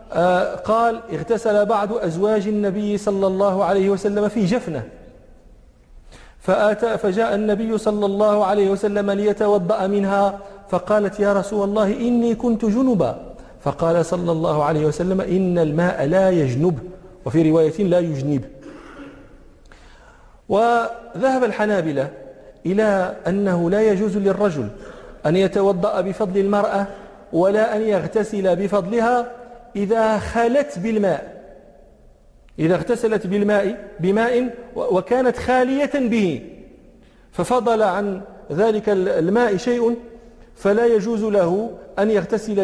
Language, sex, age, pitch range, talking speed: English, male, 40-59, 185-225 Hz, 105 wpm